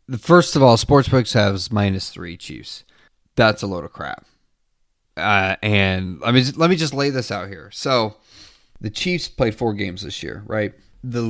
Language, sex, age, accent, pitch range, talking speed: English, male, 30-49, American, 100-130 Hz, 180 wpm